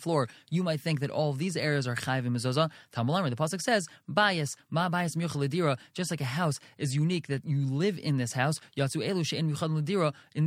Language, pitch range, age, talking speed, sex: English, 140-175 Hz, 20-39, 220 wpm, male